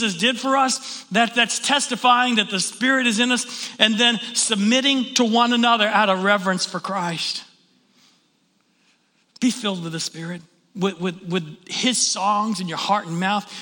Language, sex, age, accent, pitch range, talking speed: English, male, 40-59, American, 200-255 Hz, 165 wpm